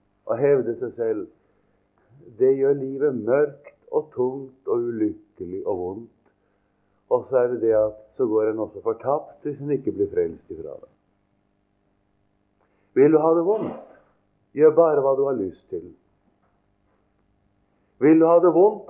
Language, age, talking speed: English, 50-69, 160 wpm